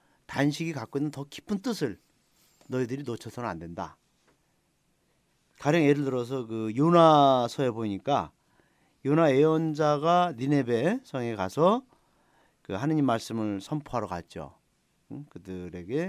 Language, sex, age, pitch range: Korean, male, 40-59, 125-170 Hz